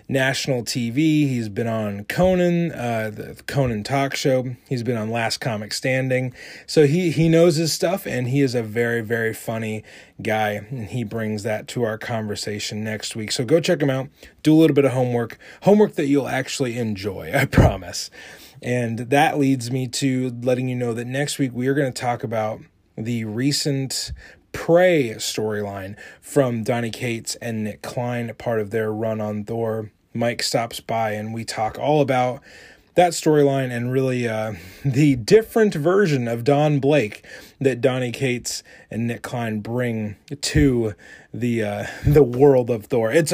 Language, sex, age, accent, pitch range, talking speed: English, male, 30-49, American, 115-145 Hz, 175 wpm